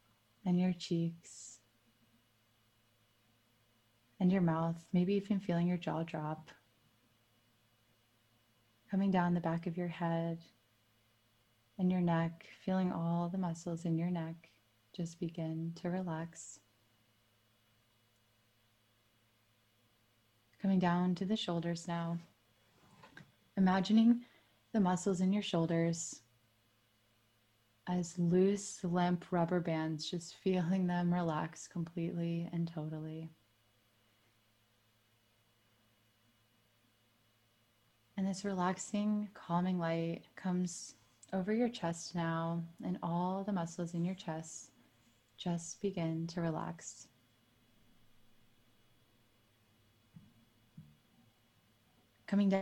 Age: 20-39